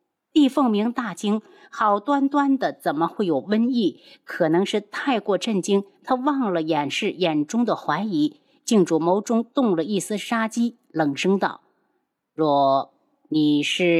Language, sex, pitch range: Chinese, female, 175-280 Hz